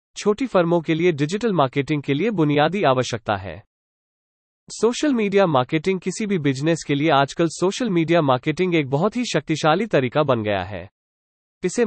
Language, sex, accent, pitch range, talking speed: English, male, Indian, 125-185 Hz, 160 wpm